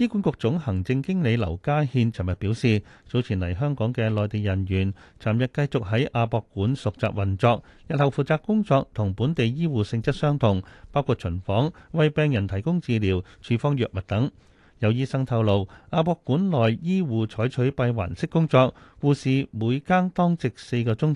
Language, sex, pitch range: Chinese, male, 105-150 Hz